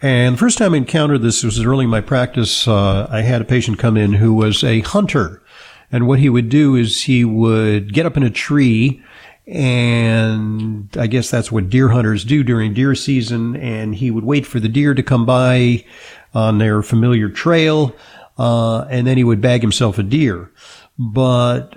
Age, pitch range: 50-69, 110-140 Hz